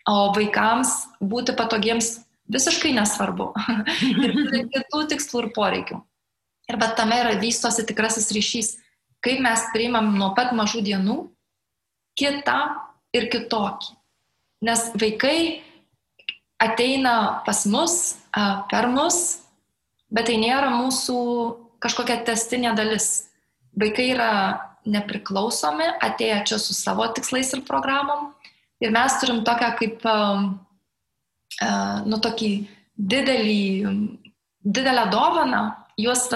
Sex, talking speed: female, 100 wpm